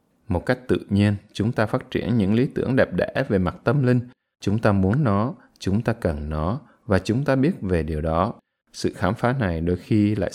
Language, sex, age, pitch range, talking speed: Vietnamese, male, 20-39, 85-120 Hz, 225 wpm